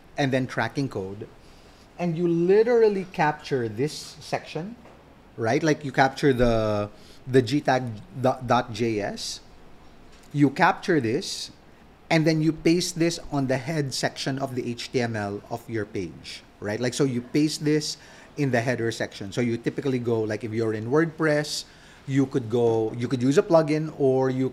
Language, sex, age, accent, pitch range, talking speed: English, male, 30-49, Filipino, 120-160 Hz, 155 wpm